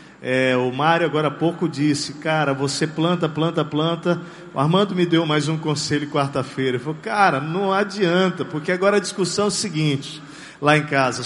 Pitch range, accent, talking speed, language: 155-220 Hz, Brazilian, 180 wpm, Portuguese